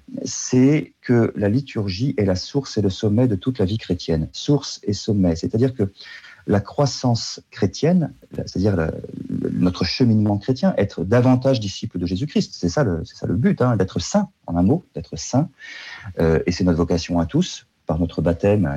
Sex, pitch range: male, 90-130 Hz